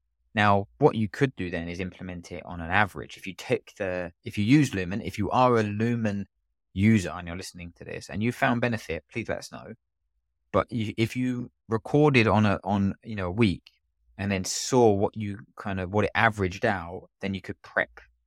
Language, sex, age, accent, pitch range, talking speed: English, male, 20-39, British, 75-100 Hz, 215 wpm